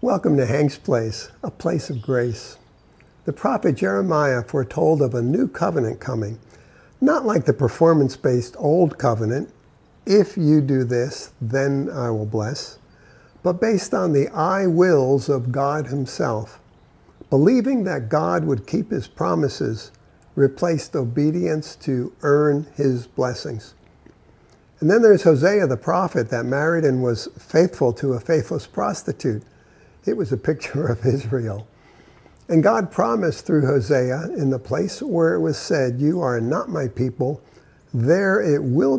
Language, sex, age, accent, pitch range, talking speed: English, male, 50-69, American, 125-160 Hz, 145 wpm